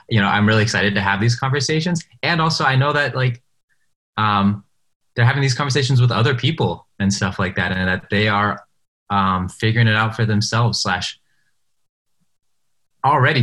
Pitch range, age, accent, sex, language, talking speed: 100-135 Hz, 20-39, American, male, English, 175 wpm